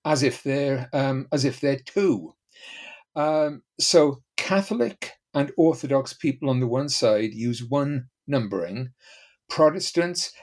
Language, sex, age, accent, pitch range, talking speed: English, male, 50-69, British, 125-165 Hz, 110 wpm